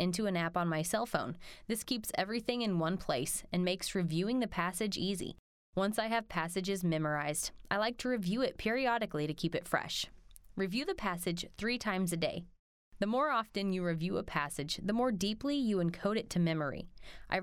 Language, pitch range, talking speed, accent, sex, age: English, 165-225 Hz, 195 wpm, American, female, 20-39